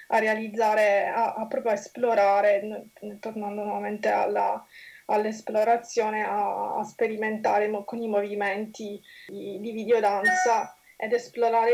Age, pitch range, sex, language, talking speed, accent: 20-39, 215-255 Hz, female, Italian, 120 wpm, native